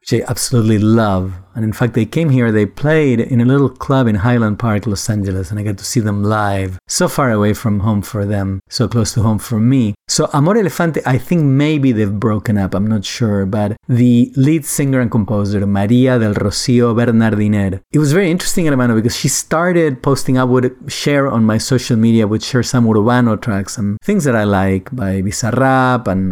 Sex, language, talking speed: male, English, 215 wpm